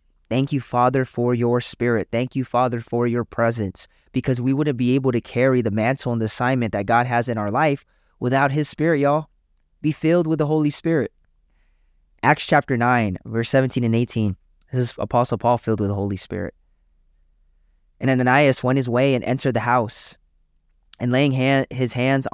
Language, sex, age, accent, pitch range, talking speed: English, male, 20-39, American, 105-130 Hz, 185 wpm